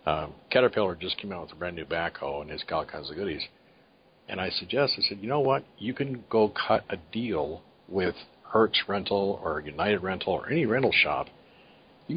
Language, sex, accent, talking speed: English, male, American, 205 wpm